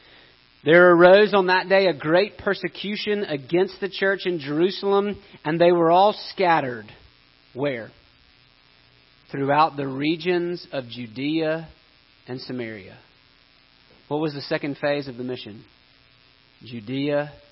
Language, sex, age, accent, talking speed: English, male, 40-59, American, 120 wpm